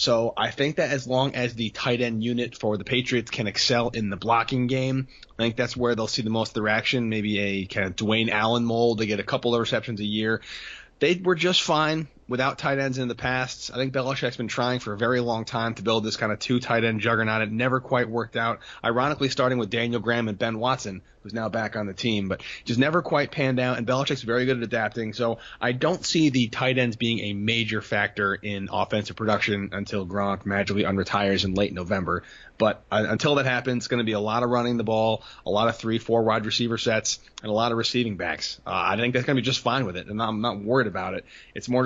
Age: 30-49